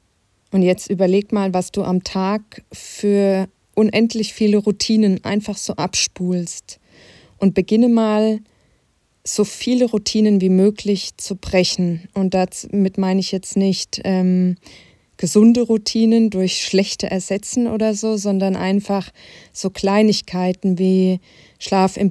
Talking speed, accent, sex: 125 wpm, German, female